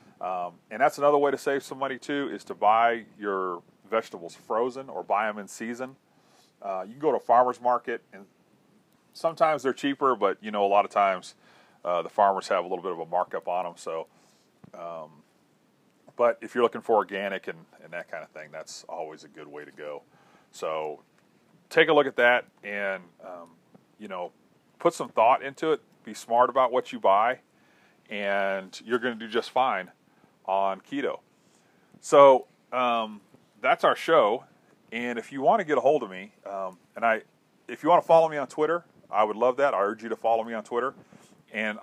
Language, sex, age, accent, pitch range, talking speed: English, male, 40-59, American, 100-135 Hz, 205 wpm